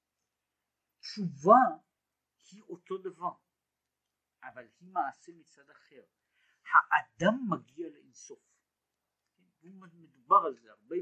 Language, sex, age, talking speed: Hebrew, male, 50-69, 85 wpm